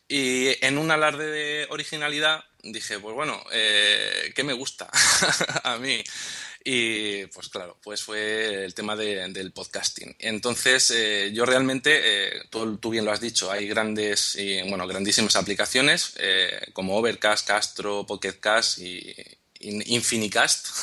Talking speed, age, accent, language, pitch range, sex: 145 wpm, 20-39, Spanish, Spanish, 105-130 Hz, male